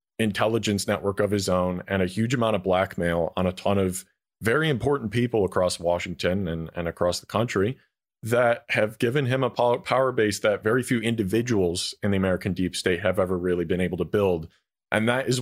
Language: English